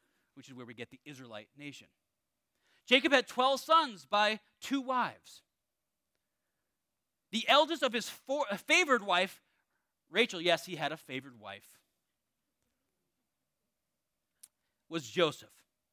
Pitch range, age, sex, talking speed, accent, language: 170-265 Hz, 30-49, male, 115 wpm, American, English